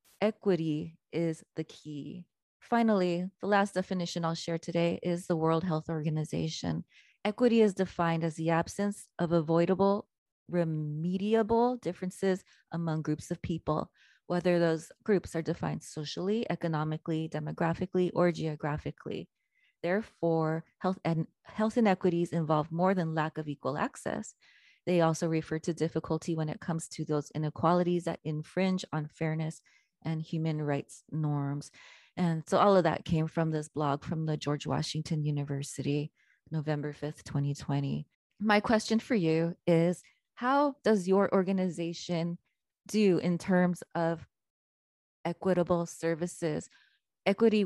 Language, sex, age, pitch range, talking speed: English, female, 20-39, 155-185 Hz, 130 wpm